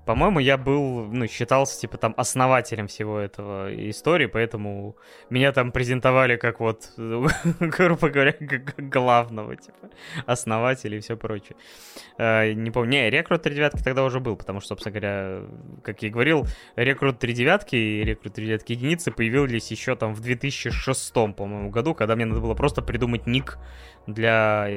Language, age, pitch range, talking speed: Russian, 20-39, 105-135 Hz, 155 wpm